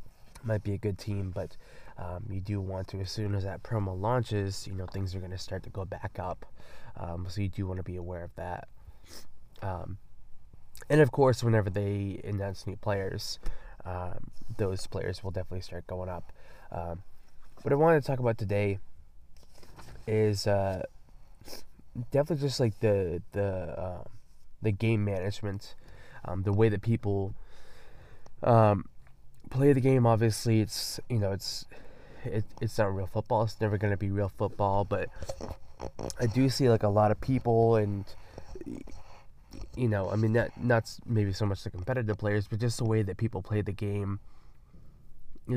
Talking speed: 175 wpm